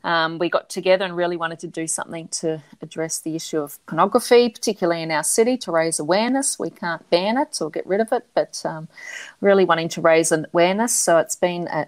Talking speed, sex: 215 wpm, female